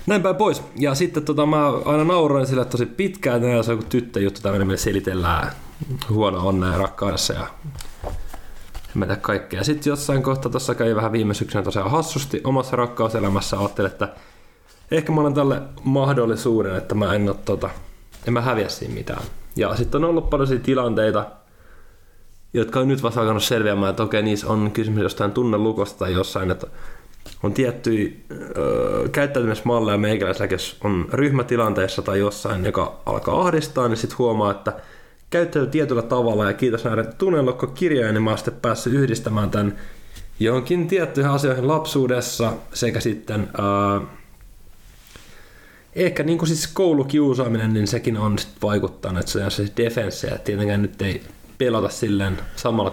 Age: 20-39